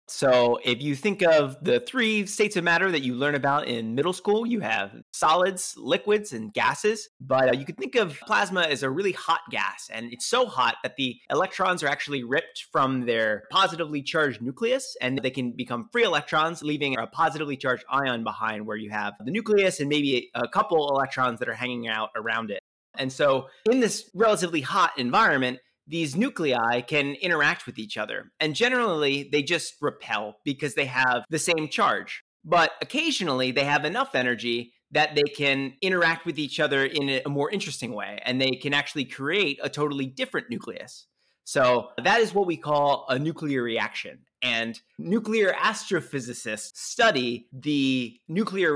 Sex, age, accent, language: male, 30-49, American, English